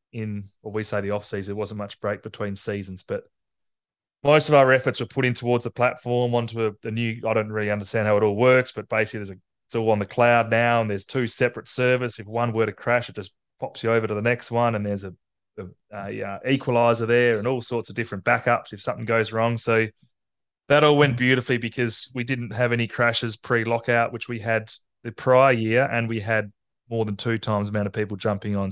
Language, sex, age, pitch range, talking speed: English, male, 20-39, 105-125 Hz, 235 wpm